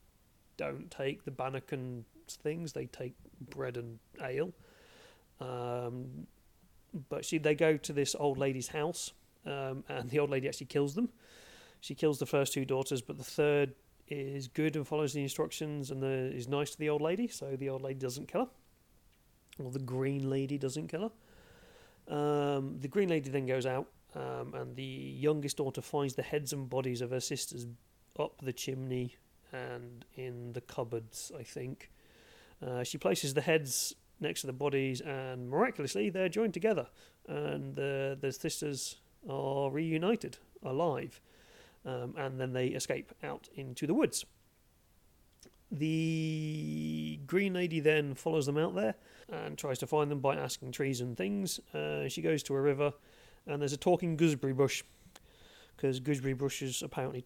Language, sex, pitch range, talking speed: English, male, 130-155 Hz, 165 wpm